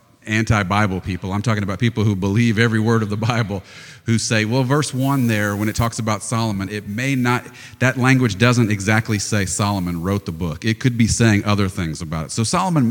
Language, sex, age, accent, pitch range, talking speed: English, male, 40-59, American, 100-125 Hz, 215 wpm